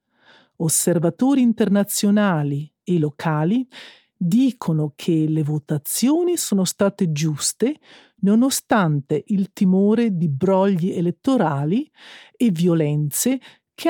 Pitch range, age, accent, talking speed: 165-230 Hz, 50-69, native, 85 wpm